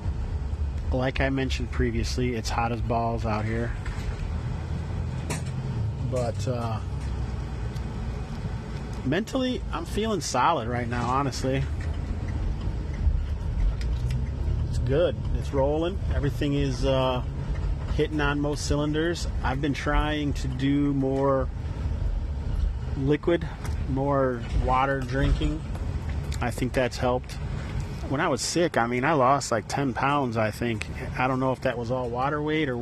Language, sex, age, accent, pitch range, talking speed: English, male, 30-49, American, 100-135 Hz, 125 wpm